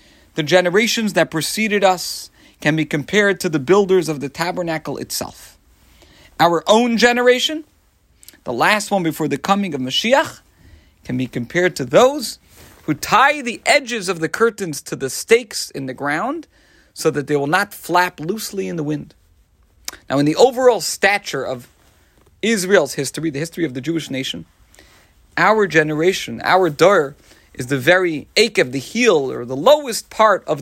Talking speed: 165 wpm